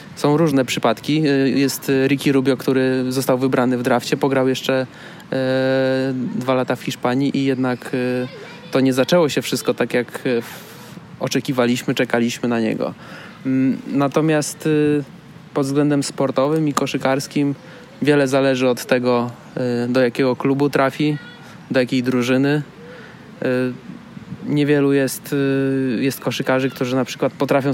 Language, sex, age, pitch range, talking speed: Polish, male, 20-39, 130-150 Hz, 120 wpm